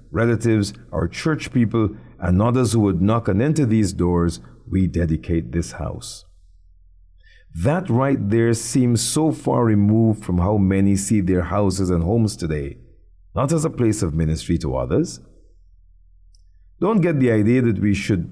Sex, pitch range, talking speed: male, 80-110 Hz, 160 wpm